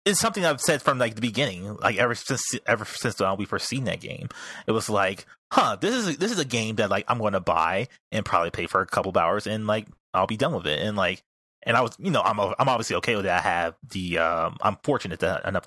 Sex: male